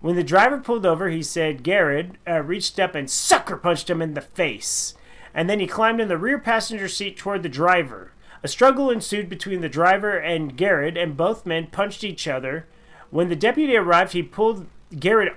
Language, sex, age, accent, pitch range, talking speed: English, male, 40-59, American, 165-230 Hz, 200 wpm